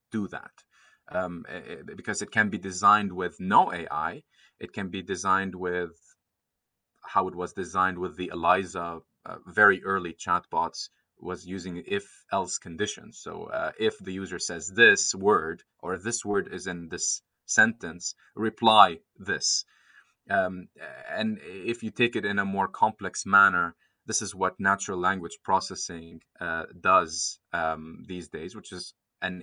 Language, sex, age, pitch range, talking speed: English, male, 30-49, 90-100 Hz, 155 wpm